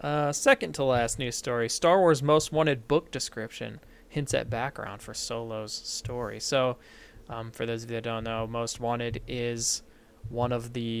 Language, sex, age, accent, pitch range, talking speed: English, male, 20-39, American, 115-145 Hz, 180 wpm